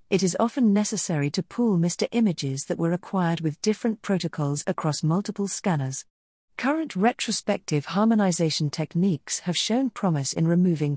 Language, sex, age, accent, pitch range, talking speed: English, female, 40-59, British, 160-215 Hz, 140 wpm